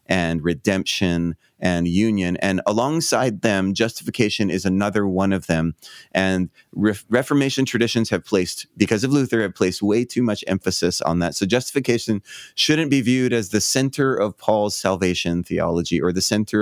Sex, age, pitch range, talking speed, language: male, 30-49, 95-125 Hz, 160 wpm, English